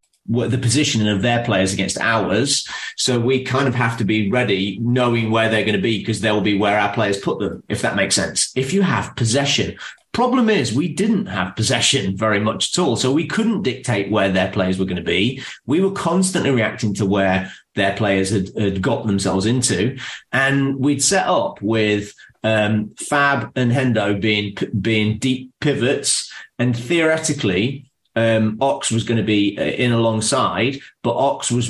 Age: 30-49